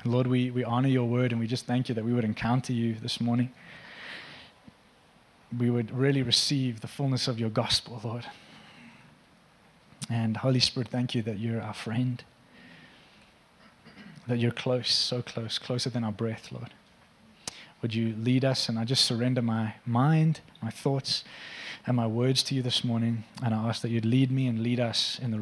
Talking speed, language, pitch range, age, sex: 185 wpm, English, 115-135 Hz, 20-39, male